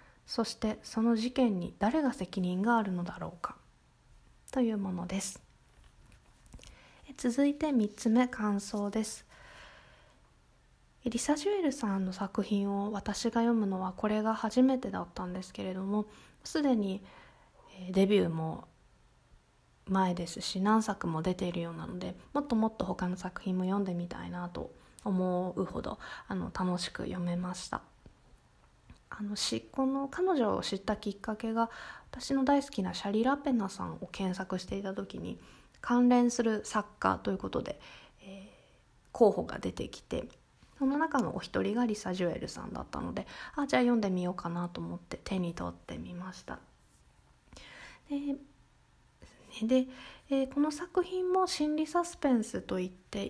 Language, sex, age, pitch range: Japanese, female, 20-39, 185-255 Hz